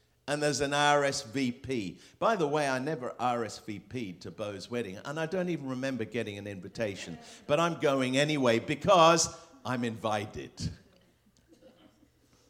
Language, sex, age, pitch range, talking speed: English, male, 50-69, 120-165 Hz, 135 wpm